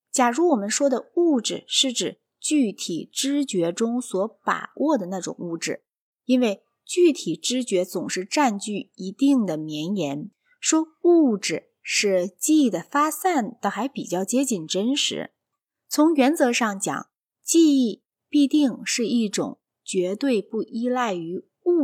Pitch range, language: 190-280 Hz, Chinese